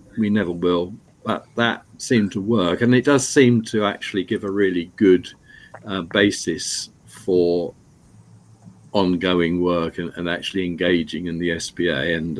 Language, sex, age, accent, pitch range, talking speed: English, male, 50-69, British, 90-120 Hz, 150 wpm